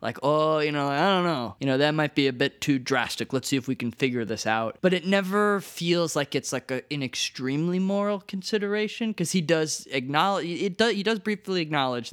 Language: English